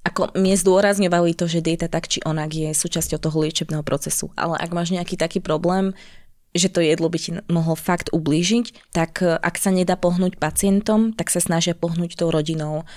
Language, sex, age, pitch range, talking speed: Slovak, female, 20-39, 165-185 Hz, 185 wpm